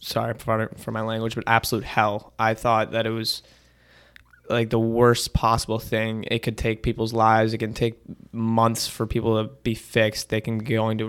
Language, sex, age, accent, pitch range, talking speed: English, male, 20-39, American, 110-115 Hz, 190 wpm